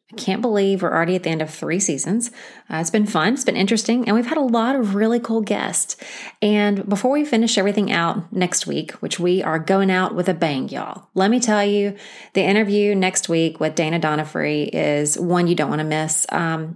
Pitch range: 175-225 Hz